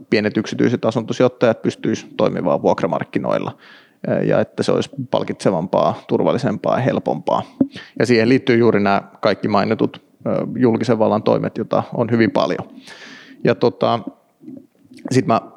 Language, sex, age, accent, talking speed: Finnish, male, 30-49, native, 115 wpm